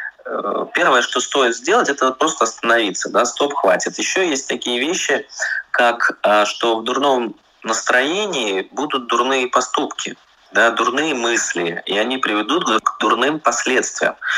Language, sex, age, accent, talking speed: Russian, male, 20-39, native, 130 wpm